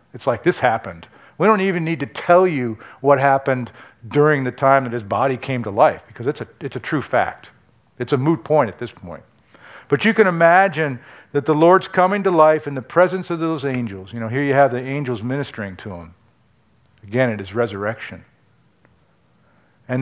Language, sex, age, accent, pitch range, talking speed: English, male, 50-69, American, 120-155 Hz, 200 wpm